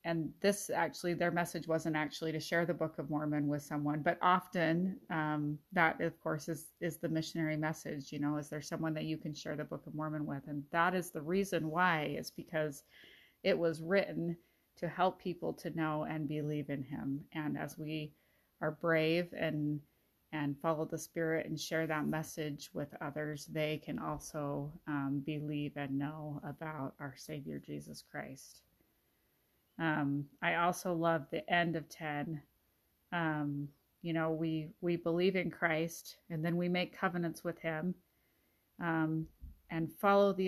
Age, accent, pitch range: 30-49, American, 150-170 Hz